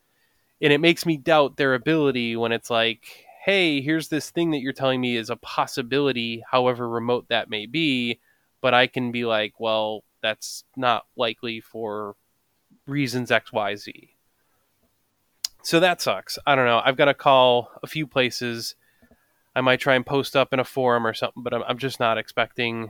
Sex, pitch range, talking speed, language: male, 120-150 Hz, 180 wpm, English